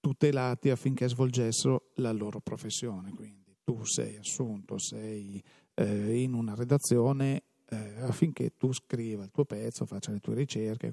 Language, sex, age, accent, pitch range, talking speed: Italian, male, 40-59, native, 115-140 Hz, 150 wpm